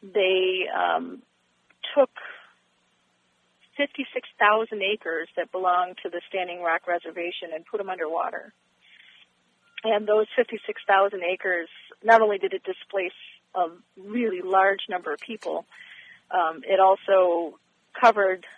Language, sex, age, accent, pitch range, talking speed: English, female, 40-59, American, 170-215 Hz, 115 wpm